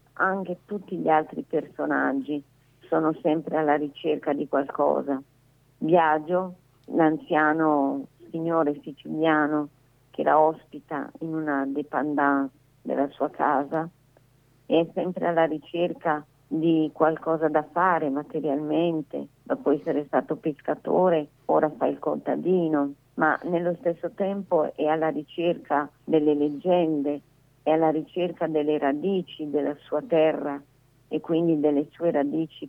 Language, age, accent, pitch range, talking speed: Italian, 40-59, native, 140-160 Hz, 115 wpm